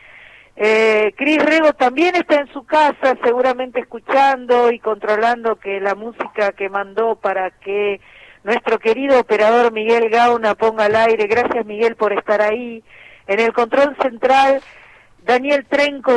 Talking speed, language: 140 wpm, Spanish